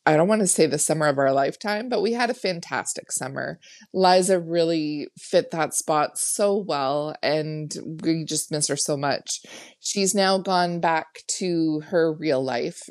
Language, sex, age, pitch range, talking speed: English, female, 20-39, 155-200 Hz, 175 wpm